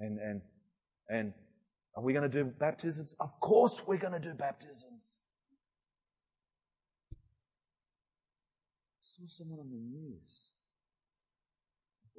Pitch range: 110-155 Hz